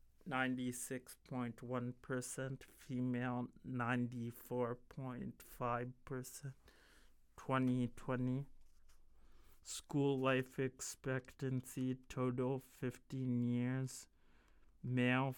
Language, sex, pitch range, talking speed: English, male, 120-130 Hz, 45 wpm